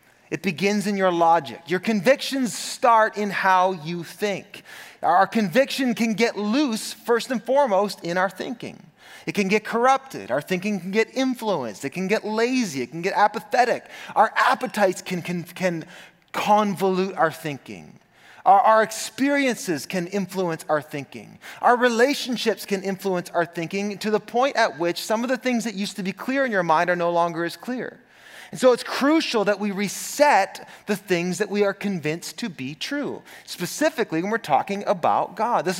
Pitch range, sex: 170-220 Hz, male